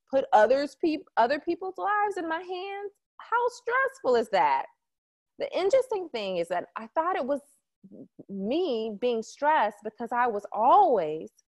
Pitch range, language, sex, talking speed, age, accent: 190-290 Hz, English, female, 150 wpm, 20-39, American